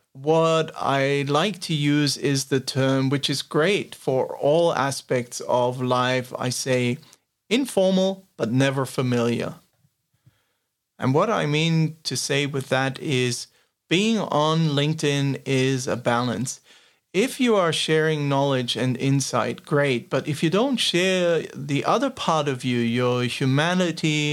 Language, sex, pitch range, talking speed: English, male, 130-160 Hz, 140 wpm